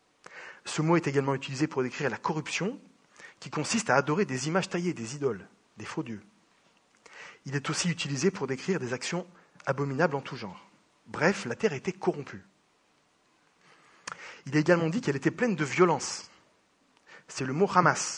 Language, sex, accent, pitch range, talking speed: English, male, French, 140-185 Hz, 170 wpm